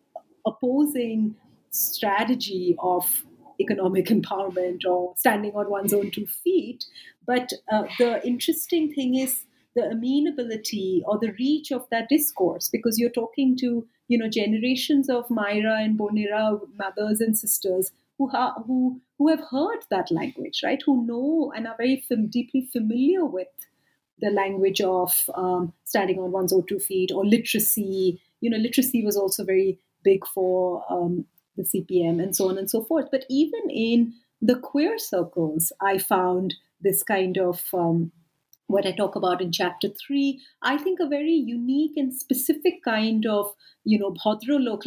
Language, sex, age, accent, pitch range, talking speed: English, female, 30-49, Indian, 190-255 Hz, 155 wpm